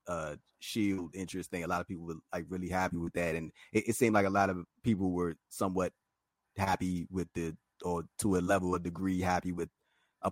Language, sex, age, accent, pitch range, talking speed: English, male, 30-49, American, 90-105 Hz, 210 wpm